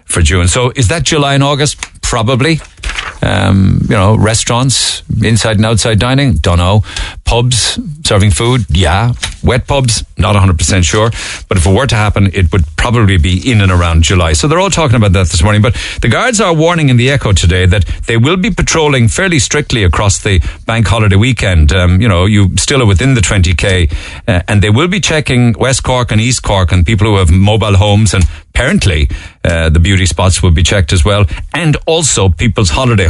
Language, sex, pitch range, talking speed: English, male, 90-115 Hz, 205 wpm